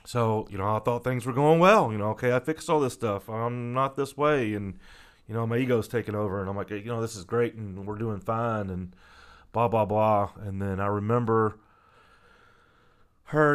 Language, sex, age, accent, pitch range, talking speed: English, male, 30-49, American, 100-120 Hz, 220 wpm